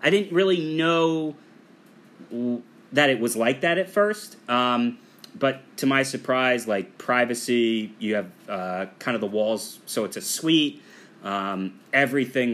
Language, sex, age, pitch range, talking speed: English, male, 30-49, 120-185 Hz, 150 wpm